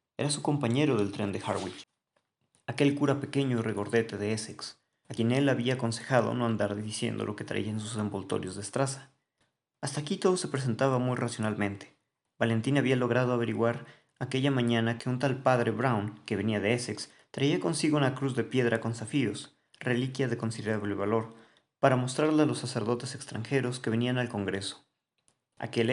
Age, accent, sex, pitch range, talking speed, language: 40-59, Mexican, male, 110-130 Hz, 175 wpm, Spanish